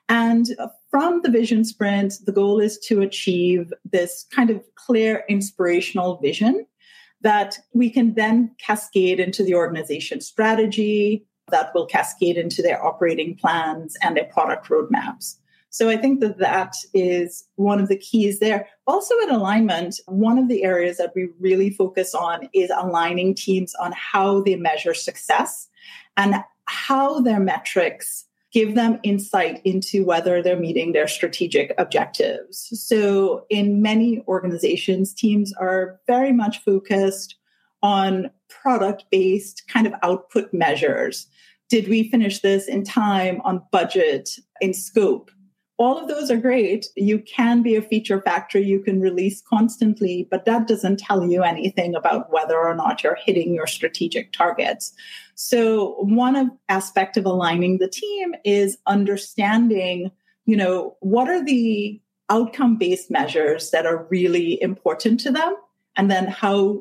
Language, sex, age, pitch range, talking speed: English, female, 30-49, 185-235 Hz, 145 wpm